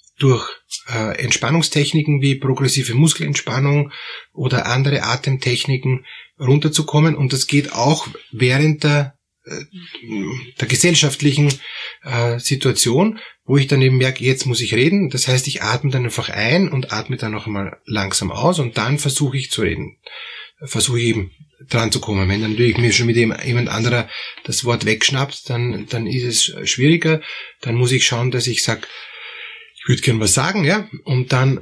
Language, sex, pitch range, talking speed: German, male, 115-145 Hz, 160 wpm